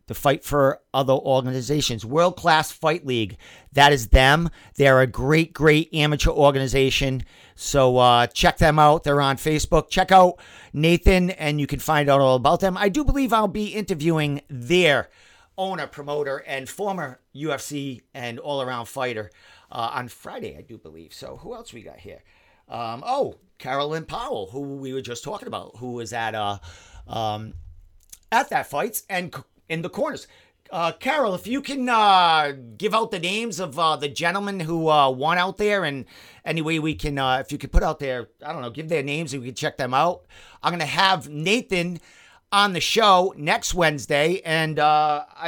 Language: English